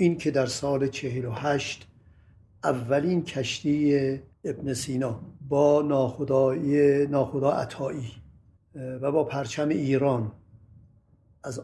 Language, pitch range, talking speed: Persian, 110-145 Hz, 95 wpm